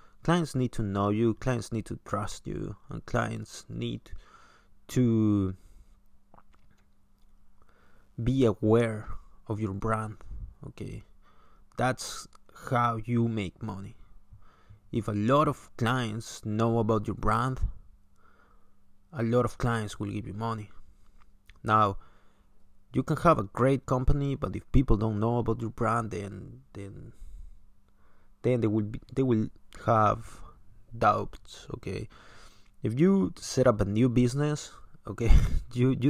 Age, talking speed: 30-49, 130 wpm